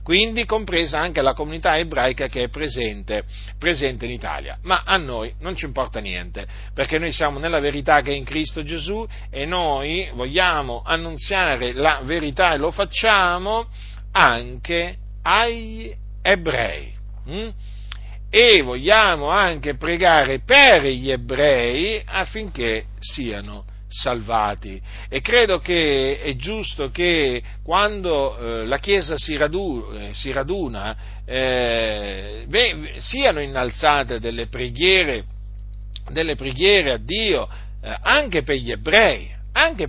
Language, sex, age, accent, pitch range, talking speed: Italian, male, 50-69, native, 115-165 Hz, 115 wpm